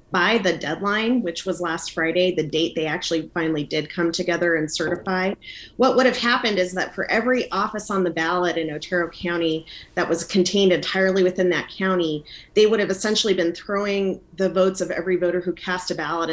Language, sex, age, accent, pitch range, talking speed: English, female, 30-49, American, 170-215 Hz, 200 wpm